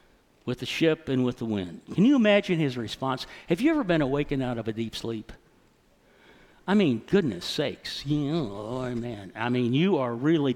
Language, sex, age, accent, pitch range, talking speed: English, male, 60-79, American, 135-215 Hz, 200 wpm